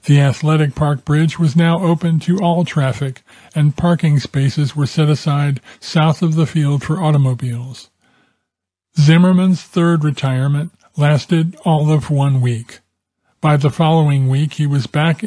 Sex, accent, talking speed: male, American, 145 wpm